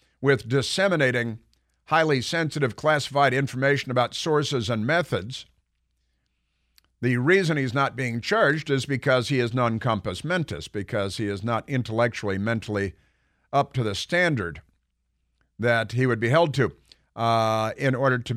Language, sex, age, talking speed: English, male, 50-69, 135 wpm